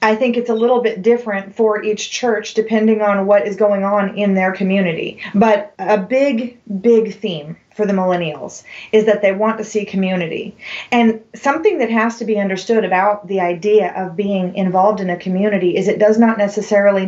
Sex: female